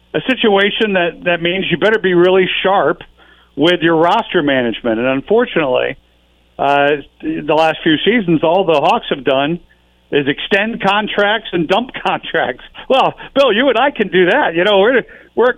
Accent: American